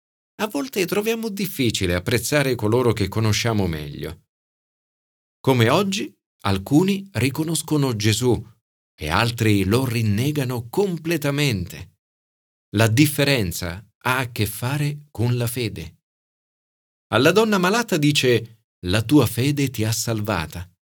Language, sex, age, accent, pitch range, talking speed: Italian, male, 40-59, native, 95-135 Hz, 110 wpm